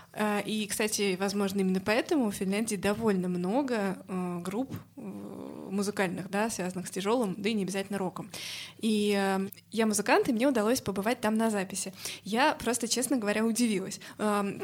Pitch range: 200-240 Hz